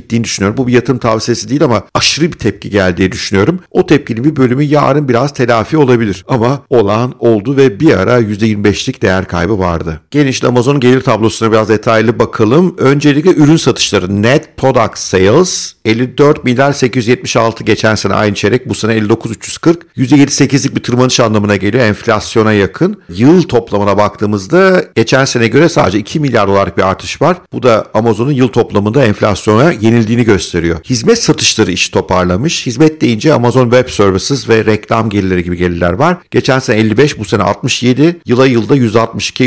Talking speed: 160 wpm